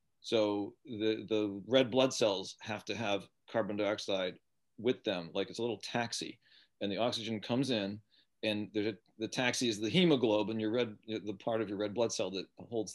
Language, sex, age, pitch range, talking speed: English, male, 40-59, 105-125 Hz, 195 wpm